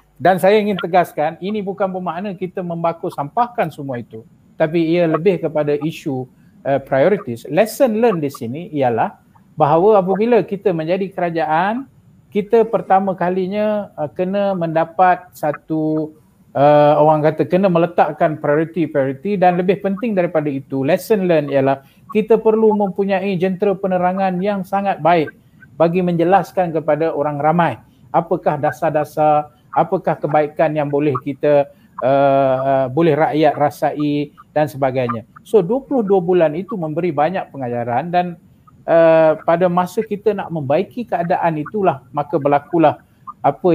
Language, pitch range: Malay, 145-185 Hz